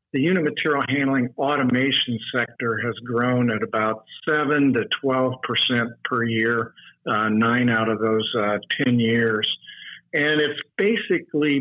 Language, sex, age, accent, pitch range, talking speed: English, male, 50-69, American, 120-140 Hz, 140 wpm